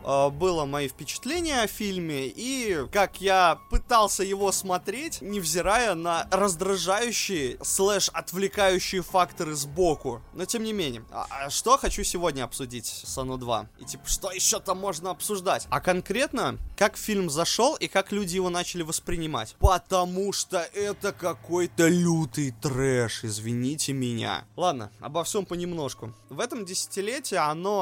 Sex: male